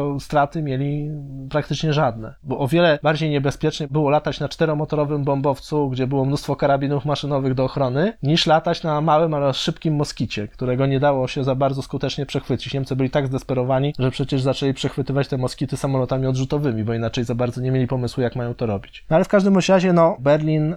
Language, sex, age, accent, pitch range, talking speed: Polish, male, 20-39, native, 130-150 Hz, 190 wpm